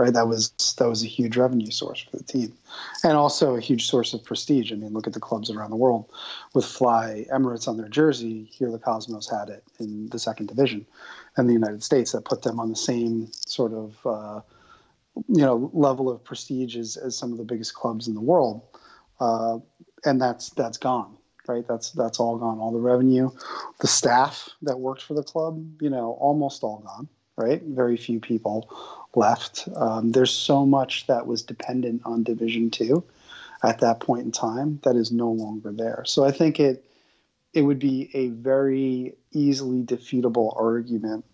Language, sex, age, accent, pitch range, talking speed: English, male, 30-49, American, 115-130 Hz, 195 wpm